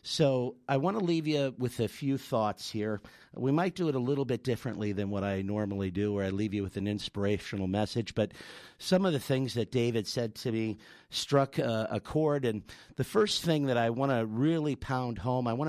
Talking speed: 225 wpm